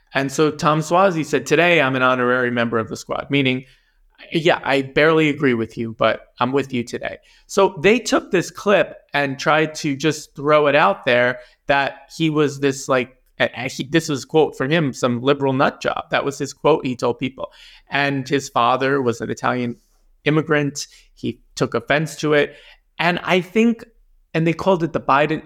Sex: male